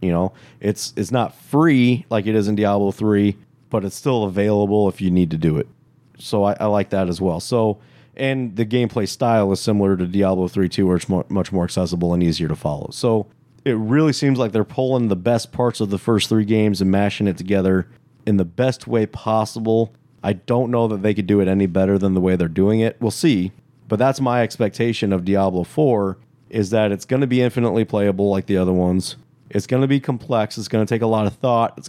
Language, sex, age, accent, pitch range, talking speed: English, male, 30-49, American, 100-120 Hz, 235 wpm